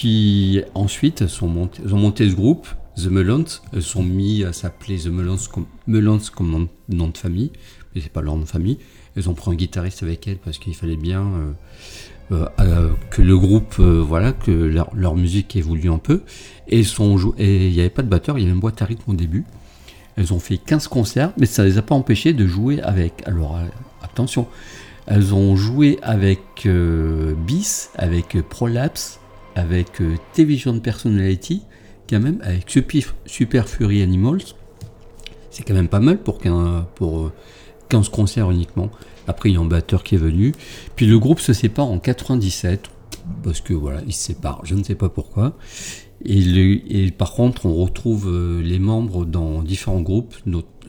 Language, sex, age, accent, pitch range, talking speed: French, male, 50-69, French, 90-110 Hz, 195 wpm